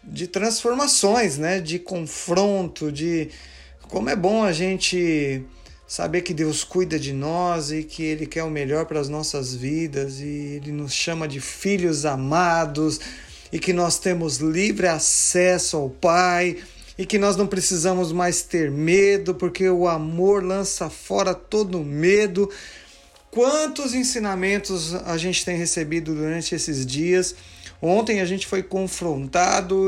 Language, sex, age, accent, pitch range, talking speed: Portuguese, male, 40-59, Brazilian, 155-200 Hz, 145 wpm